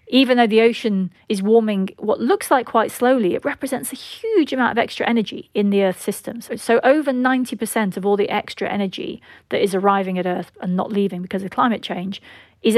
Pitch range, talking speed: 190-230 Hz, 205 wpm